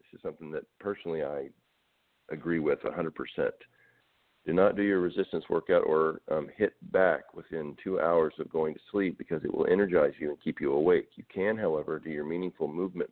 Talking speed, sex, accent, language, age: 190 wpm, male, American, English, 40-59